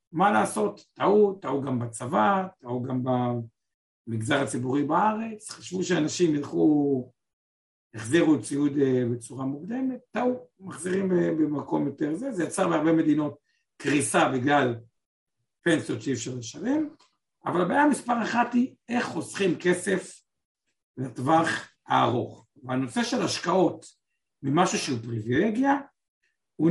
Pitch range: 135-200 Hz